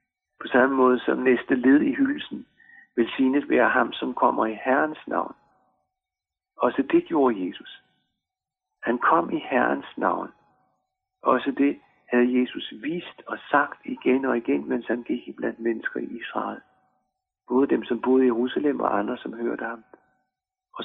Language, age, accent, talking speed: Danish, 60-79, native, 160 wpm